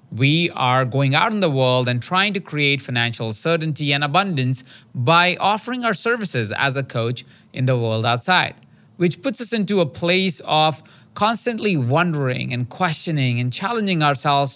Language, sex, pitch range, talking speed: English, male, 125-175 Hz, 165 wpm